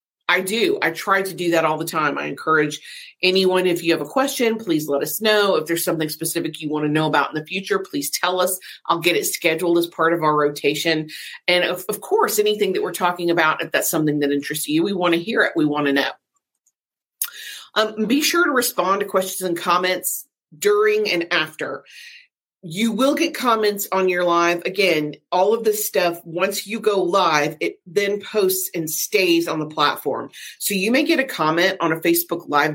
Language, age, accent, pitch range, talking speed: English, 40-59, American, 160-210 Hz, 215 wpm